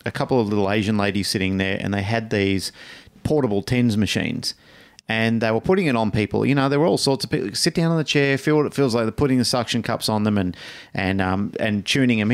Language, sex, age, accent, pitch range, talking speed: English, male, 30-49, Australian, 105-130 Hz, 265 wpm